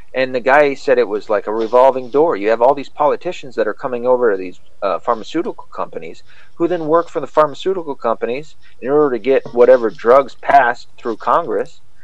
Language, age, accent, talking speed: English, 40-59, American, 200 wpm